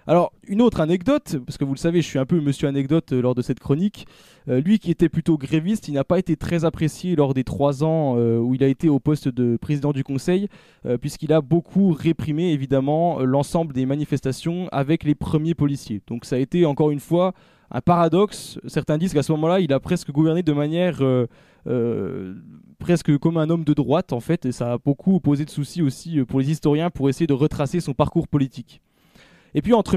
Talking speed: 220 wpm